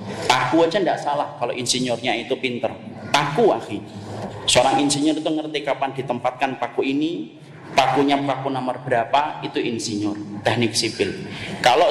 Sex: male